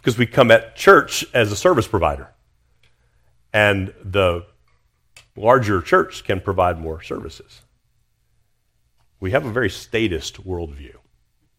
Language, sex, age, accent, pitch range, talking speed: English, male, 50-69, American, 85-115 Hz, 120 wpm